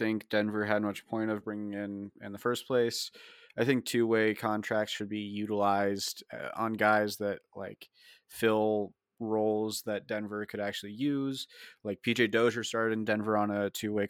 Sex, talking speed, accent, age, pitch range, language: male, 165 wpm, American, 30-49, 105-115 Hz, English